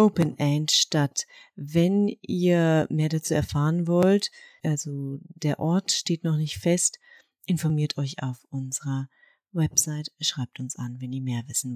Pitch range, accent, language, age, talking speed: 145-175 Hz, German, German, 30-49, 145 wpm